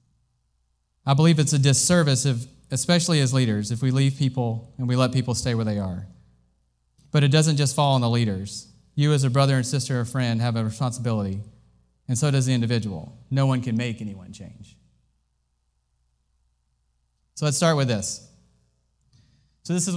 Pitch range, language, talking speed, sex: 105-140 Hz, English, 175 wpm, male